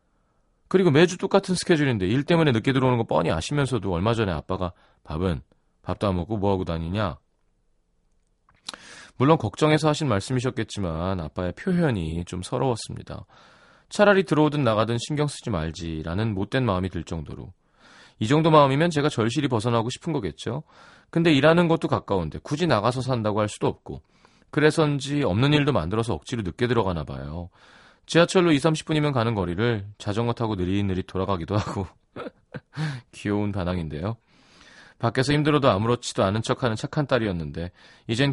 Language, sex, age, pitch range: Korean, male, 30-49, 95-150 Hz